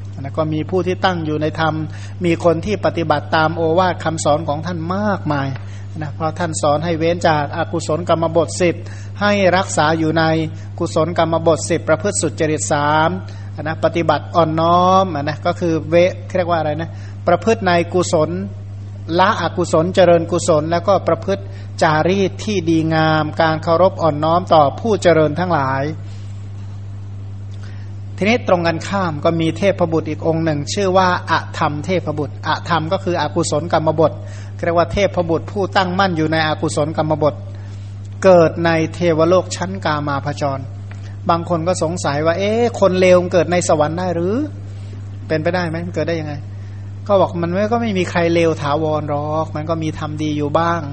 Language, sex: Thai, male